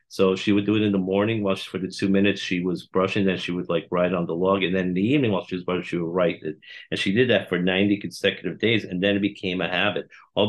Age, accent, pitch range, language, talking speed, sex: 50-69, American, 95-110 Hz, English, 290 wpm, male